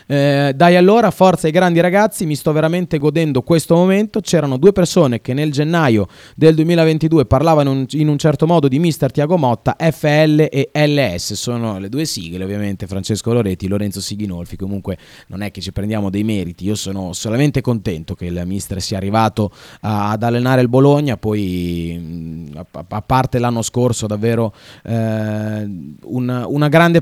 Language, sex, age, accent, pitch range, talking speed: Italian, male, 20-39, native, 105-140 Hz, 165 wpm